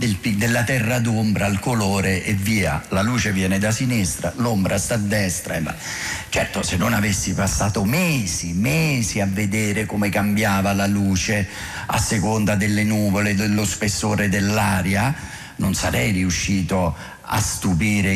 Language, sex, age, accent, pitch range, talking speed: Italian, male, 50-69, native, 100-125 Hz, 135 wpm